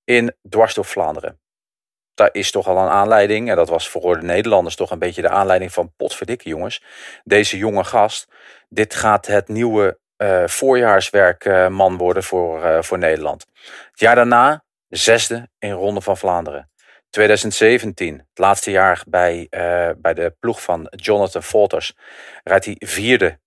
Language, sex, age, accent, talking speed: English, male, 40-59, Dutch, 155 wpm